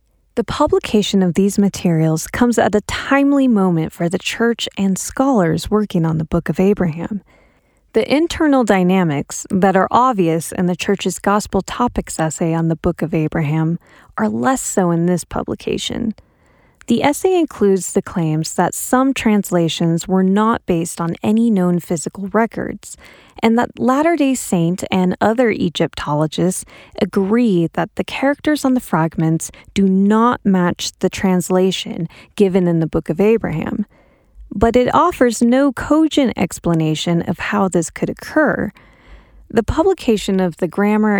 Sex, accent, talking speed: female, American, 145 wpm